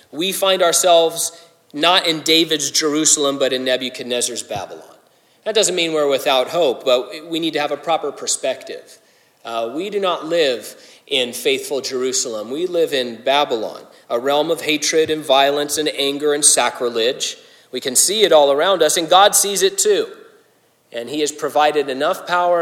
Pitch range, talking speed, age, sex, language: 140-200 Hz, 170 wpm, 30-49, male, English